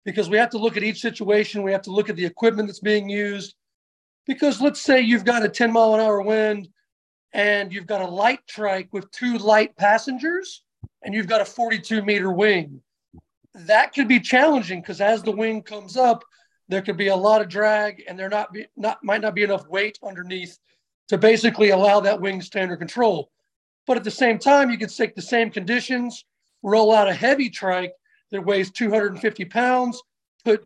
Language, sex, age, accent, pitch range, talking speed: English, male, 40-59, American, 200-245 Hz, 200 wpm